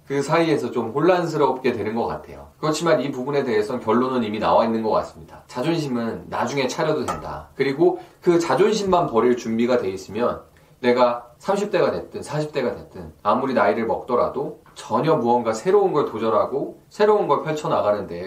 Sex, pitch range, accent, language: male, 110-150 Hz, native, Korean